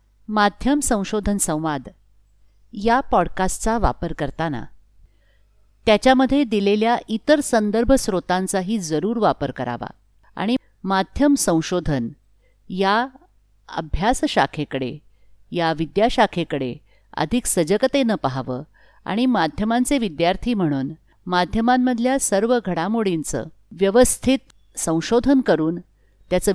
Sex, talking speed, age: female, 80 wpm, 50-69